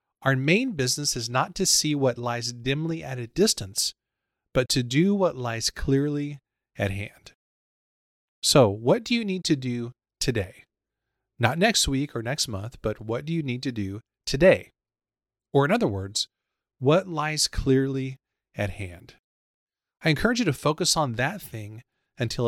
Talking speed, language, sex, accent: 165 wpm, English, male, American